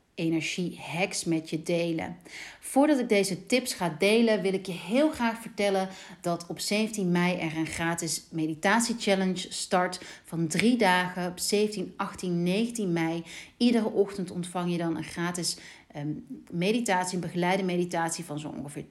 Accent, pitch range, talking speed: Dutch, 170-200 Hz, 155 wpm